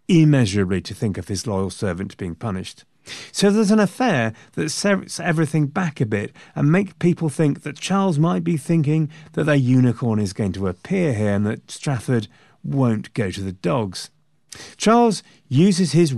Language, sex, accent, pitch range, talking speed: English, male, British, 100-155 Hz, 175 wpm